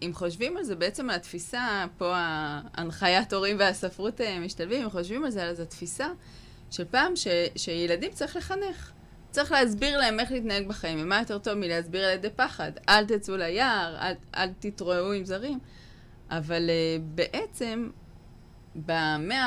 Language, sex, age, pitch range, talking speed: Hebrew, female, 20-39, 175-240 Hz, 150 wpm